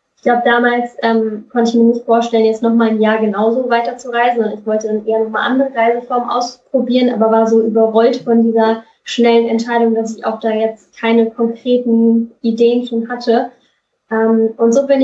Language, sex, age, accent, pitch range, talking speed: German, female, 10-29, German, 225-250 Hz, 190 wpm